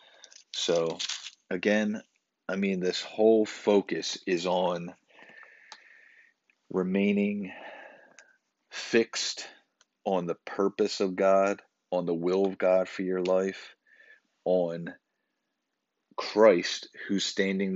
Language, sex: English, male